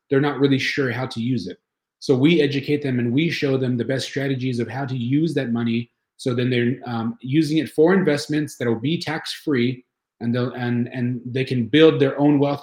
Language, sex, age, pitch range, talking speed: English, male, 30-49, 120-140 Hz, 225 wpm